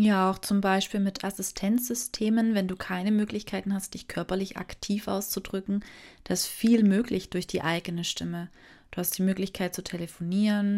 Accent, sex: German, female